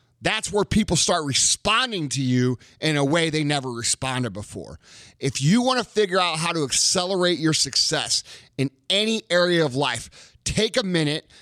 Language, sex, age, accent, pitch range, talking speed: English, male, 30-49, American, 130-180 Hz, 175 wpm